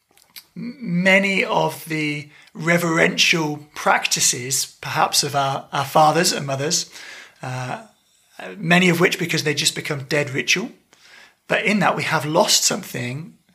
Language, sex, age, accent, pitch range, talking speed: English, male, 30-49, British, 145-185 Hz, 130 wpm